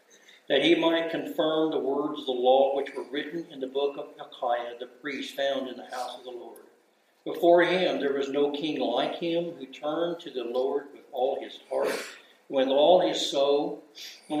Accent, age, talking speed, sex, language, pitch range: American, 60-79, 200 wpm, male, English, 140-175 Hz